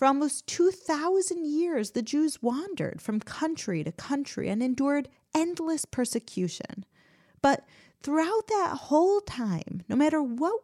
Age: 30-49